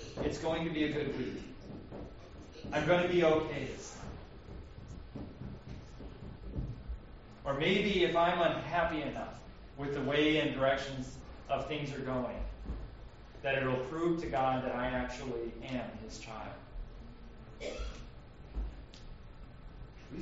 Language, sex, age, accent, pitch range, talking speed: English, male, 30-49, American, 125-205 Hz, 125 wpm